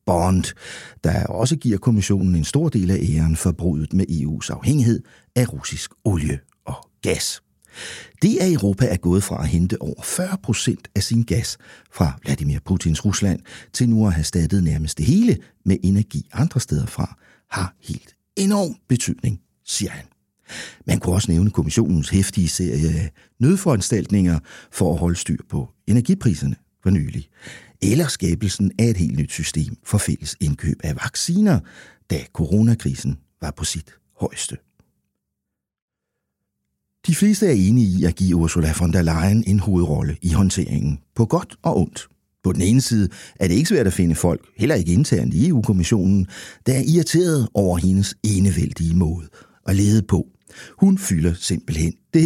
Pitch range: 80-115 Hz